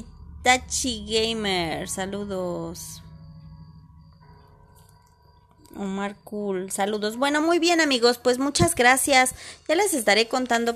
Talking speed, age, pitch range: 95 wpm, 20-39, 185-250 Hz